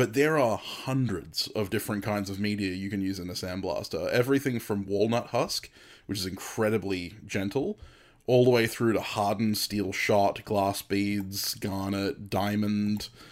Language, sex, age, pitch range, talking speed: English, male, 20-39, 95-110 Hz, 160 wpm